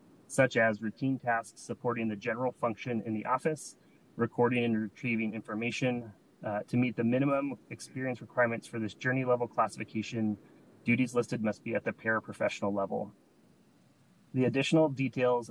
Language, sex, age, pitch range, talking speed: English, male, 30-49, 110-125 Hz, 145 wpm